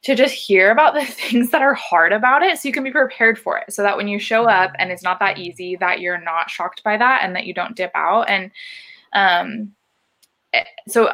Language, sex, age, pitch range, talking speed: English, female, 20-39, 185-240 Hz, 235 wpm